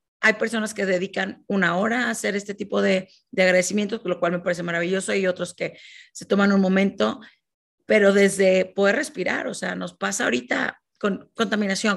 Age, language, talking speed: 40-59, Spanish, 180 wpm